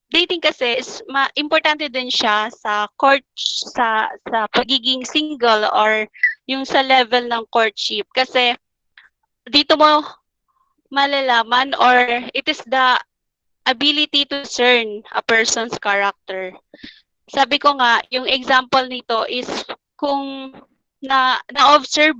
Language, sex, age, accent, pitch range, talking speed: Filipino, female, 20-39, native, 230-280 Hz, 115 wpm